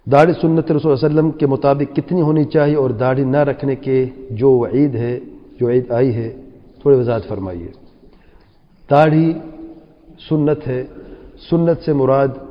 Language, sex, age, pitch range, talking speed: English, male, 40-59, 130-170 Hz, 140 wpm